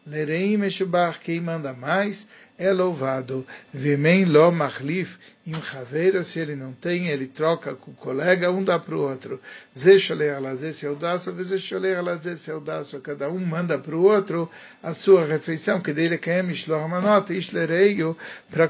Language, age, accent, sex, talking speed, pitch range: English, 60-79, Brazilian, male, 150 wpm, 145-175 Hz